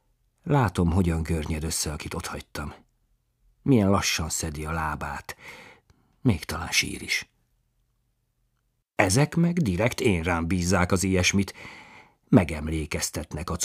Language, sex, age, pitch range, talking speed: Hungarian, male, 50-69, 90-125 Hz, 105 wpm